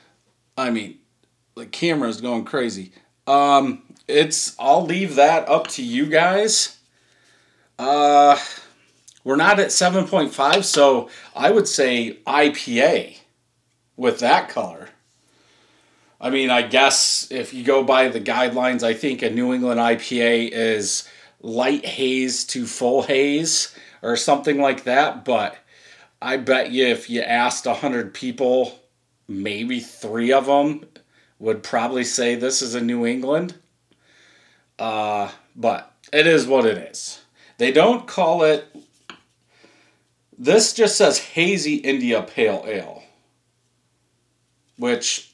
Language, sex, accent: English, male, American